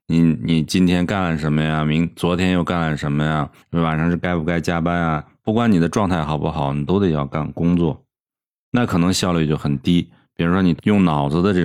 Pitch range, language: 80-95 Hz, Chinese